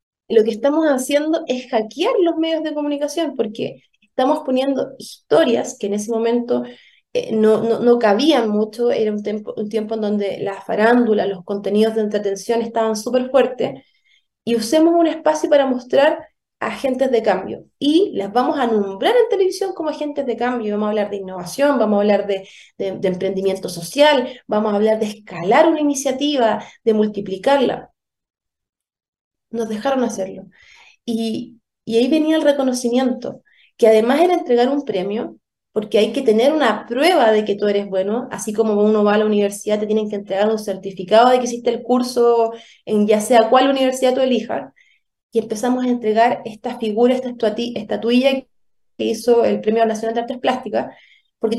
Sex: female